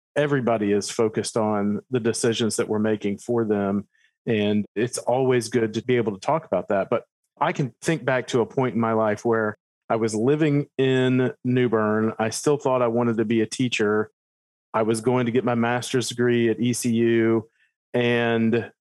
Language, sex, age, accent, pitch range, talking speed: English, male, 40-59, American, 110-130 Hz, 190 wpm